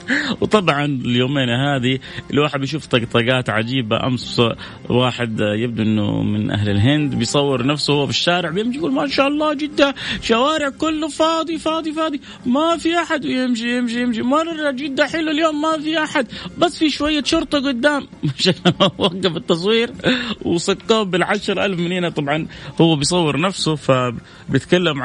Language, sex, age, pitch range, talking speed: Arabic, male, 30-49, 125-195 Hz, 150 wpm